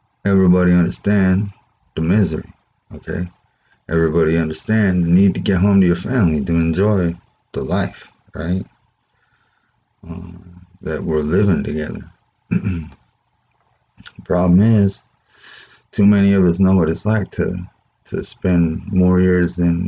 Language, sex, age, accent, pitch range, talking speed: English, male, 30-49, American, 85-100 Hz, 125 wpm